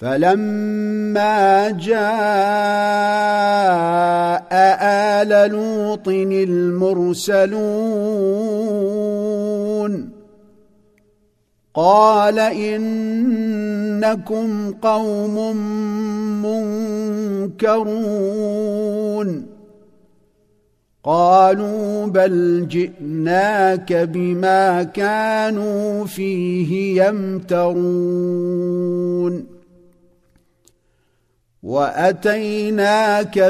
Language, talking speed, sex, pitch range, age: Arabic, 30 wpm, male, 180-210 Hz, 50-69